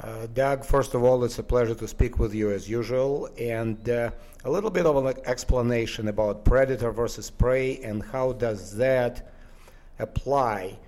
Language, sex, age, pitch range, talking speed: English, male, 50-69, 105-125 Hz, 170 wpm